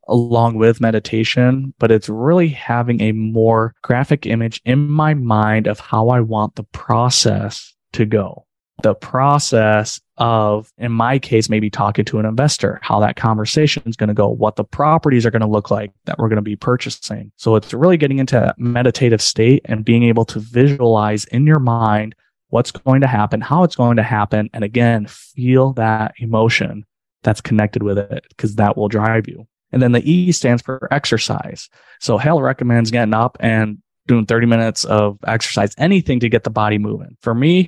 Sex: male